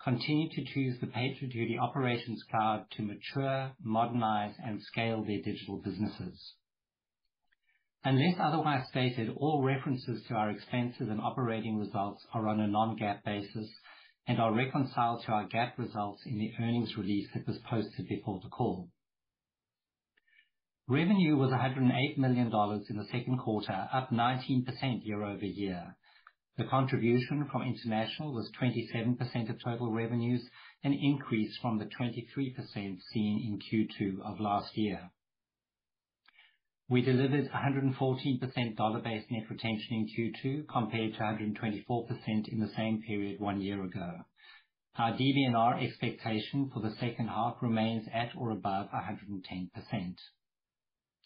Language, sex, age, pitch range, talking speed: English, male, 50-69, 105-130 Hz, 130 wpm